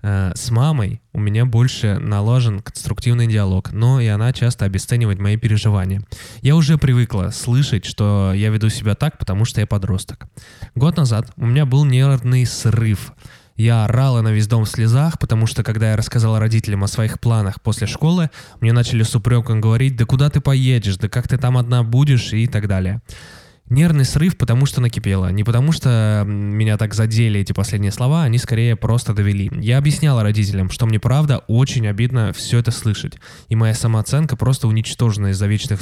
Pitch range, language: 105-125 Hz, Russian